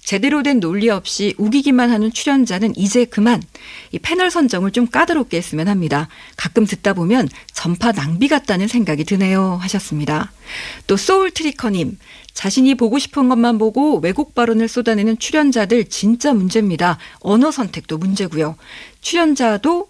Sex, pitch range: female, 195-265 Hz